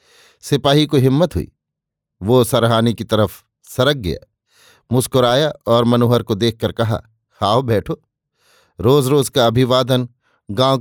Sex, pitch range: male, 115-140 Hz